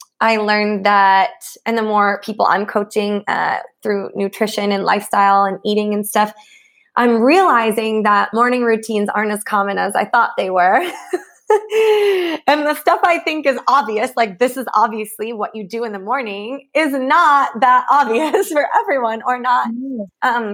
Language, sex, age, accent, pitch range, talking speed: English, female, 20-39, American, 205-260 Hz, 165 wpm